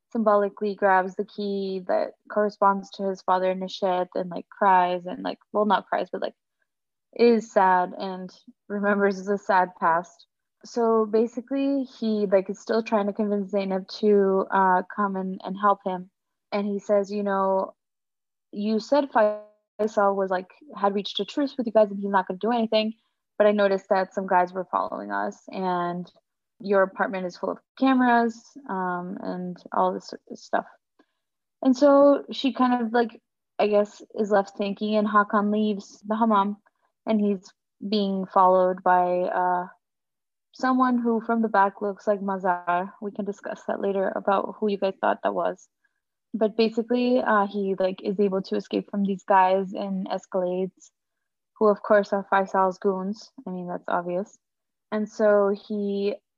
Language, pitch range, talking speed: English, 190-220 Hz, 165 wpm